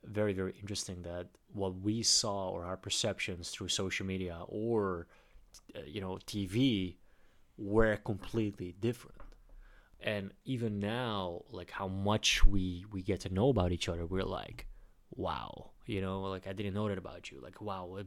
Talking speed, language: 160 wpm, English